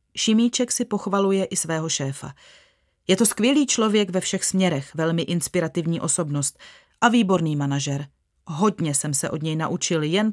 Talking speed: 150 wpm